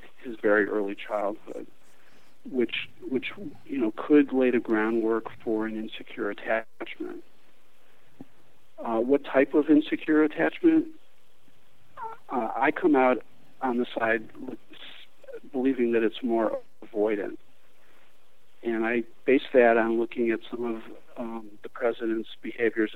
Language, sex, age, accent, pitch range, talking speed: English, male, 50-69, American, 110-140 Hz, 120 wpm